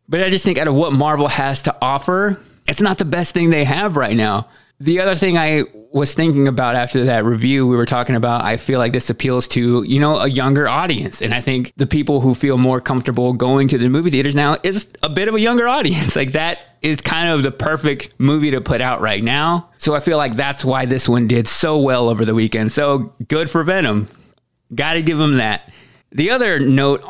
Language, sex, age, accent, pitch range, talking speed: English, male, 20-39, American, 125-150 Hz, 235 wpm